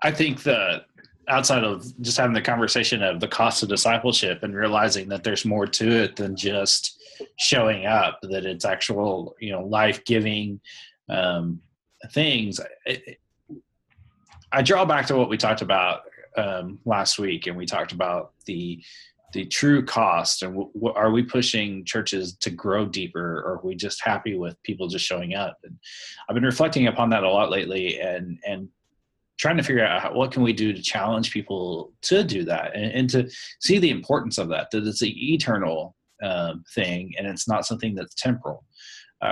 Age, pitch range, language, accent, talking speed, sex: 30-49, 100-120 Hz, English, American, 180 wpm, male